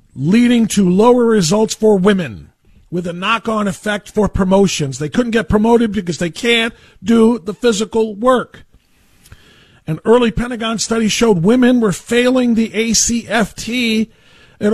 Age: 40-59